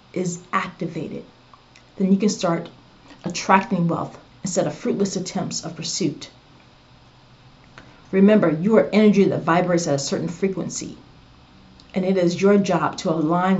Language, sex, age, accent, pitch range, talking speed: English, female, 40-59, American, 155-195 Hz, 130 wpm